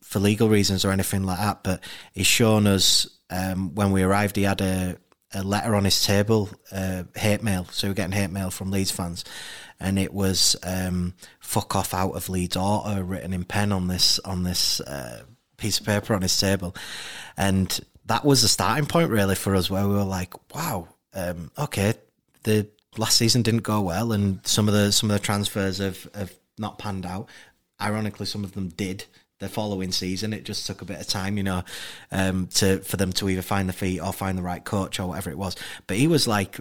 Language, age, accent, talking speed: English, 30-49, British, 215 wpm